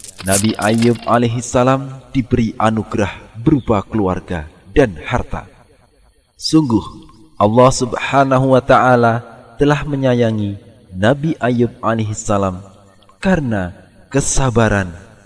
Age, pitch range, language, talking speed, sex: 30-49, 100-125 Hz, Indonesian, 75 wpm, male